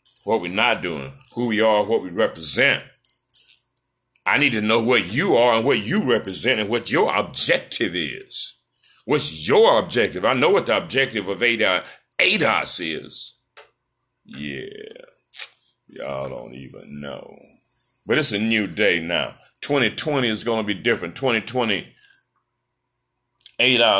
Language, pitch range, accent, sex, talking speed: English, 95-125 Hz, American, male, 140 wpm